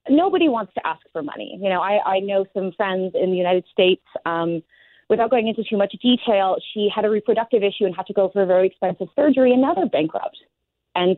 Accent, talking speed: American, 230 wpm